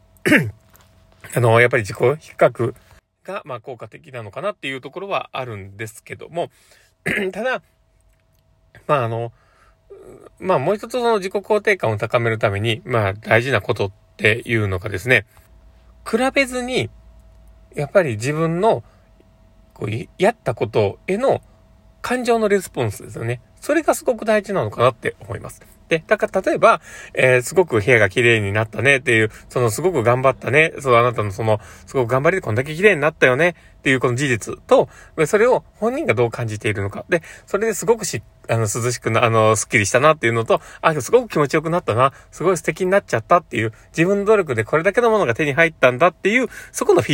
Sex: male